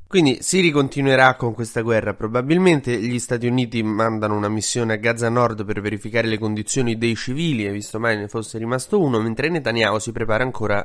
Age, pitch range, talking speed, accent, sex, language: 20-39, 105-125 Hz, 190 wpm, native, male, Italian